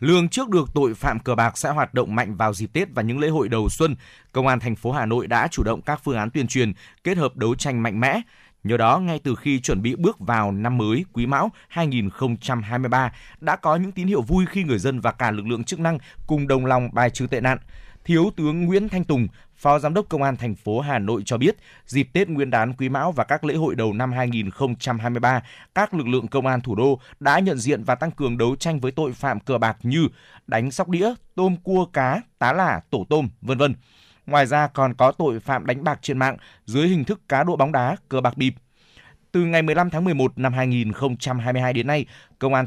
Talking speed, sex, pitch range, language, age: 240 wpm, male, 120-160 Hz, Vietnamese, 20-39